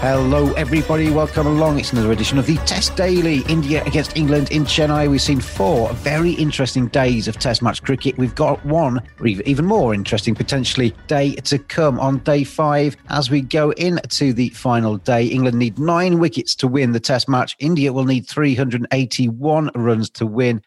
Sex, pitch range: male, 120-150 Hz